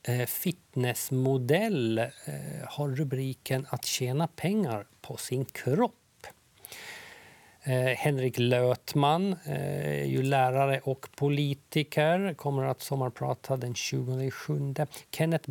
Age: 50-69